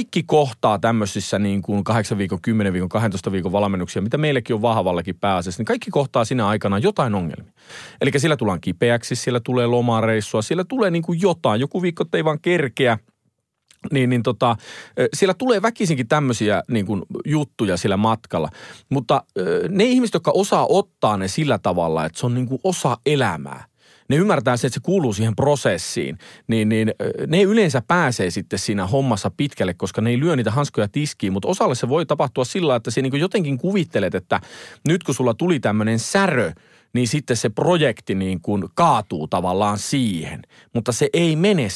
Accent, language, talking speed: native, Finnish, 180 wpm